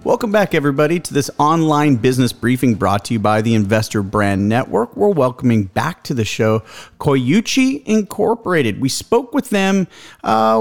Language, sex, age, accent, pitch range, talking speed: English, male, 40-59, American, 120-160 Hz, 165 wpm